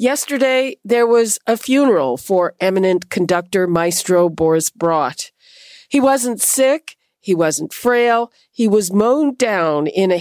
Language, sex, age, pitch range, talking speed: English, female, 50-69, 175-235 Hz, 135 wpm